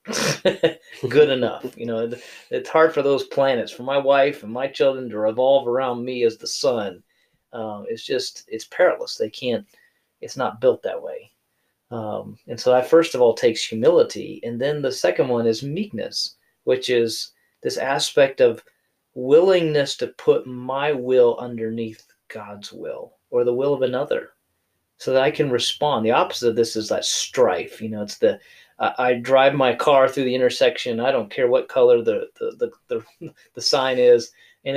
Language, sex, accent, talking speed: English, male, American, 180 wpm